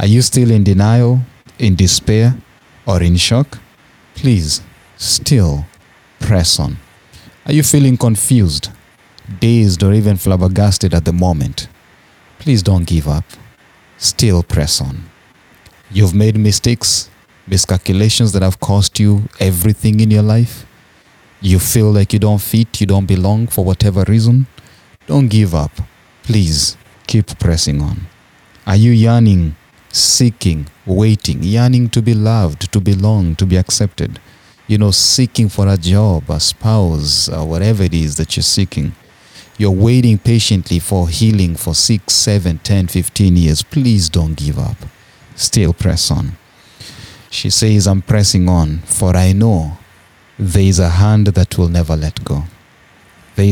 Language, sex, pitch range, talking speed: English, male, 90-110 Hz, 145 wpm